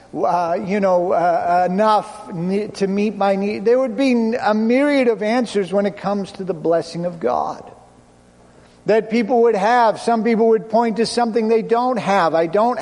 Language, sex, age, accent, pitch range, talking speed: English, male, 50-69, American, 175-230 Hz, 185 wpm